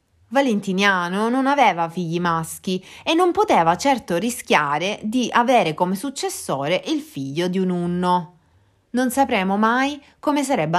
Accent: native